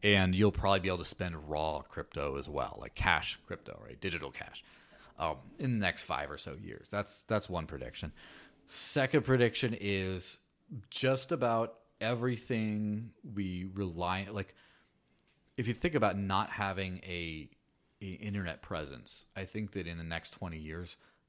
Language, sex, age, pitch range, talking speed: English, male, 30-49, 85-105 Hz, 160 wpm